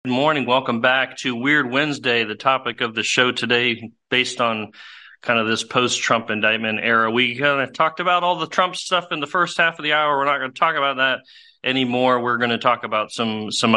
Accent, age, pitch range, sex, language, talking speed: American, 40-59, 110-130 Hz, male, English, 230 wpm